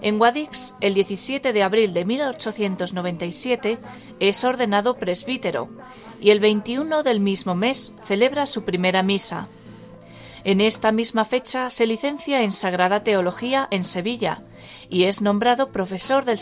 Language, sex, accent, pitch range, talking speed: Spanish, female, Spanish, 195-240 Hz, 135 wpm